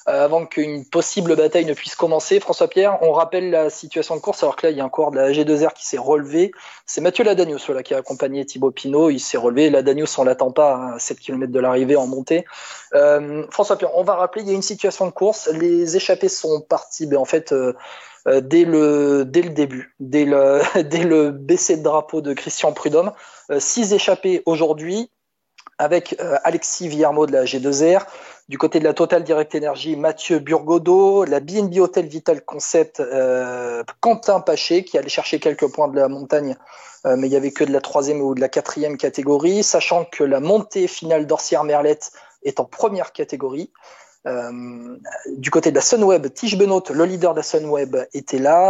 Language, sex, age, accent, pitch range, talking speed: French, male, 20-39, French, 145-190 Hz, 205 wpm